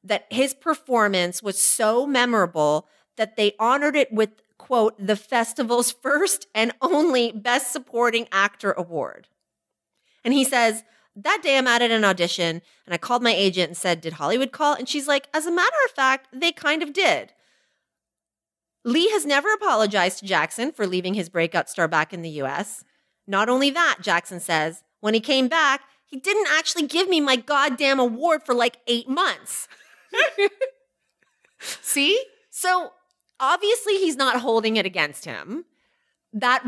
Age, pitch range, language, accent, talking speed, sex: 30-49, 200-295 Hz, English, American, 160 wpm, female